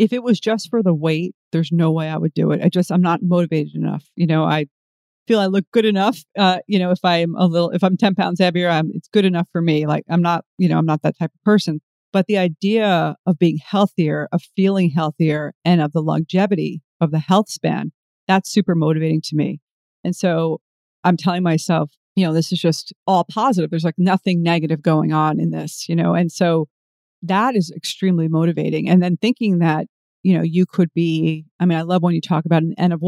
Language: English